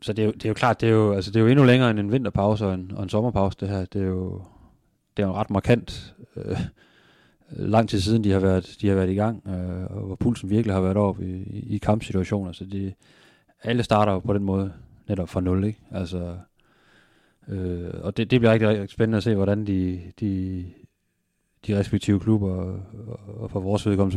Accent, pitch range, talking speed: native, 95-105 Hz, 220 wpm